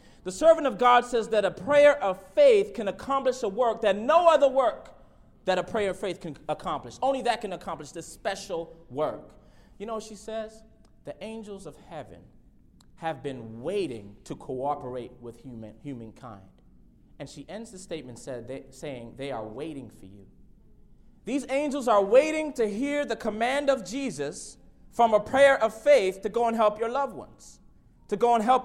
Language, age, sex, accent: English, 30-49, male, American